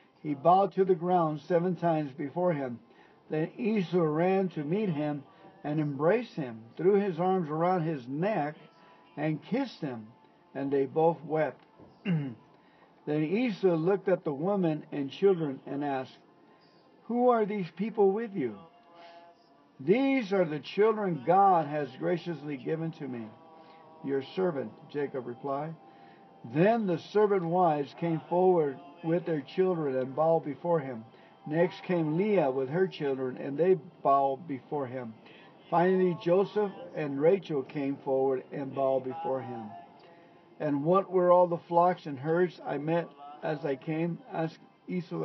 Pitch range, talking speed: 145-180 Hz, 145 wpm